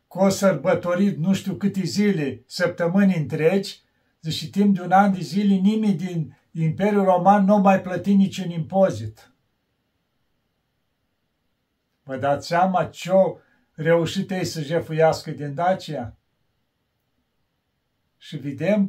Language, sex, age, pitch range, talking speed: Romanian, male, 50-69, 145-190 Hz, 120 wpm